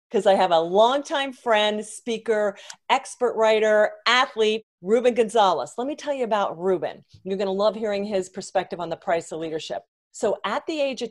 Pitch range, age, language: 195-250 Hz, 40-59, English